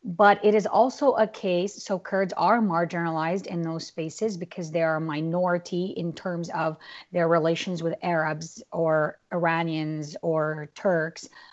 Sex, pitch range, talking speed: female, 175-225 Hz, 150 wpm